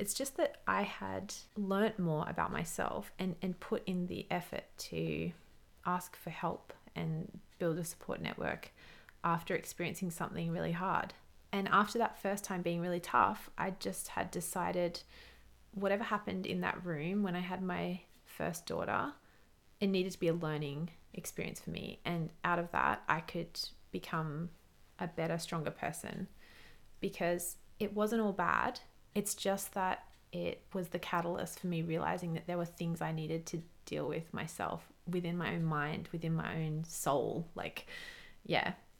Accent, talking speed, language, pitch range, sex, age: Australian, 165 wpm, English, 165-195 Hz, female, 30-49